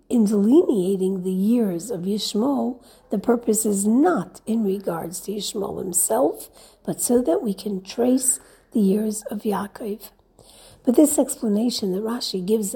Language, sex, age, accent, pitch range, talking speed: English, female, 60-79, American, 200-250 Hz, 145 wpm